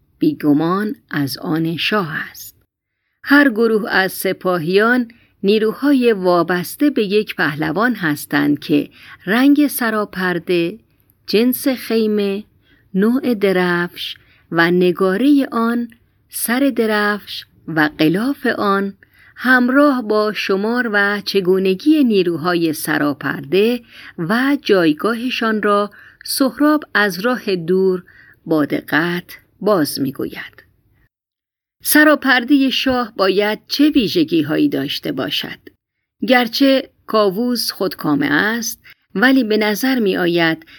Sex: female